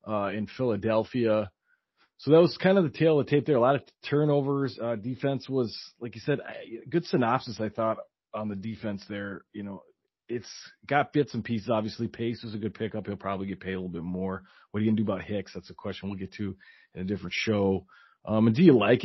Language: English